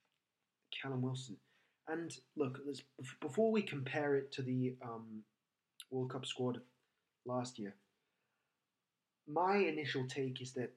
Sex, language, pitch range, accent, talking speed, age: male, English, 125-145 Hz, British, 125 wpm, 30-49